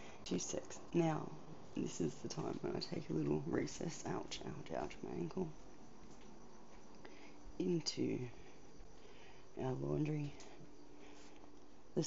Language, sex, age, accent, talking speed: English, female, 30-49, Australian, 105 wpm